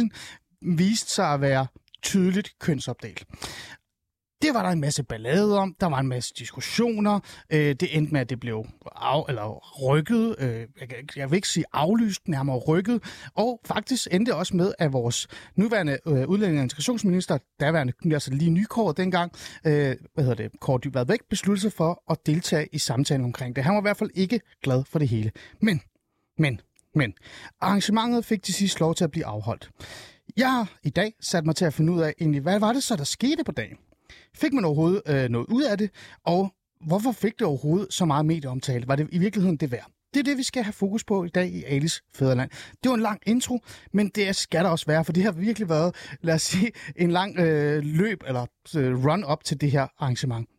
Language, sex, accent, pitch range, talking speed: Danish, male, native, 140-205 Hz, 200 wpm